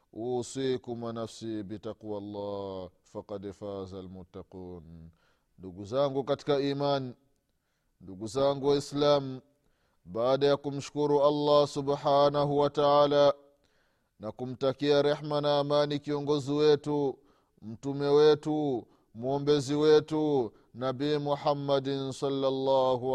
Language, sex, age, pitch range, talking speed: Swahili, male, 30-49, 105-145 Hz, 85 wpm